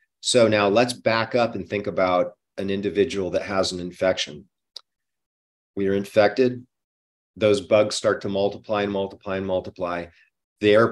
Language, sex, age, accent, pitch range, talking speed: English, male, 40-59, American, 90-110 Hz, 150 wpm